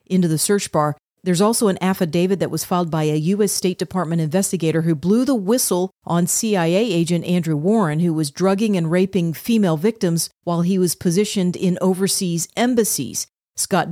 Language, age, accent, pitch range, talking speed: English, 40-59, American, 165-200 Hz, 175 wpm